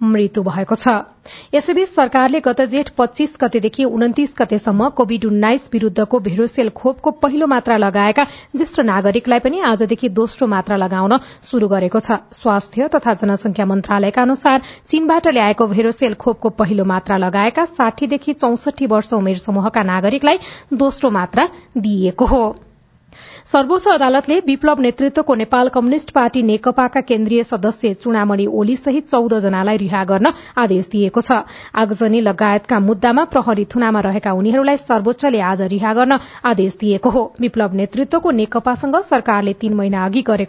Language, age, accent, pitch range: English, 40-59, Indian, 210-270 Hz